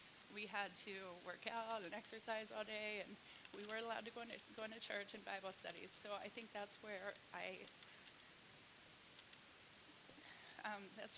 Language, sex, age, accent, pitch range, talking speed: English, female, 20-39, American, 205-235 Hz, 160 wpm